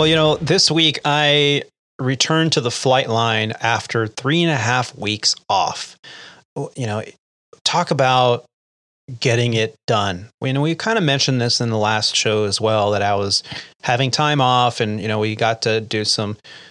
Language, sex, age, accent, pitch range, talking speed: English, male, 30-49, American, 110-140 Hz, 190 wpm